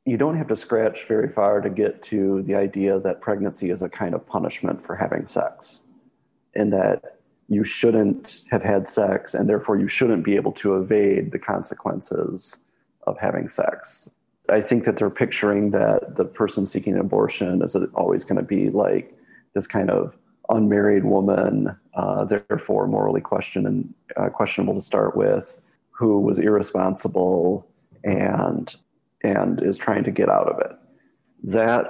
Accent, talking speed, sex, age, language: American, 160 wpm, male, 30-49, English